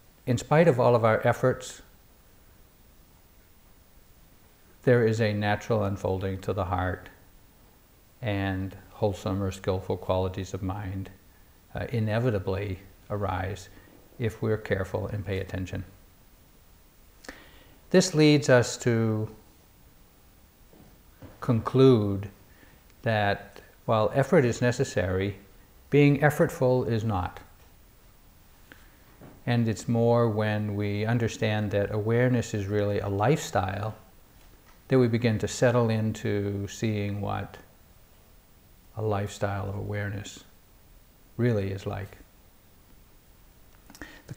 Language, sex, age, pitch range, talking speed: English, male, 60-79, 95-115 Hz, 95 wpm